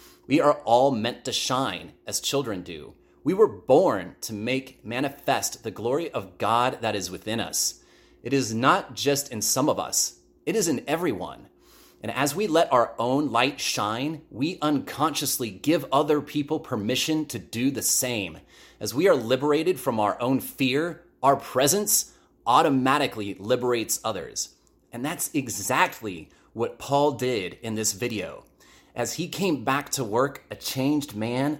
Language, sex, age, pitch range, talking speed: English, male, 30-49, 100-140 Hz, 160 wpm